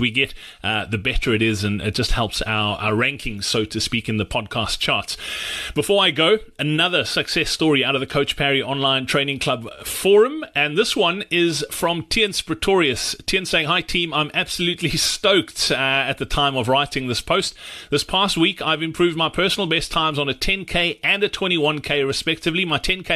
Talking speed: 195 wpm